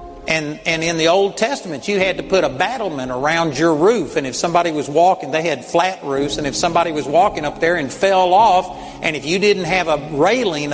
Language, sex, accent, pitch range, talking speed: English, male, American, 155-205 Hz, 230 wpm